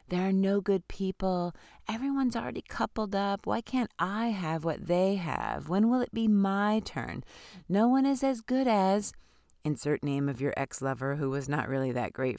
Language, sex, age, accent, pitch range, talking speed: English, female, 30-49, American, 150-205 Hz, 190 wpm